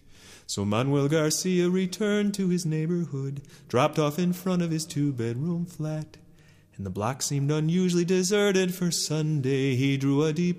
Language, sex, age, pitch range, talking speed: English, male, 30-49, 150-200 Hz, 155 wpm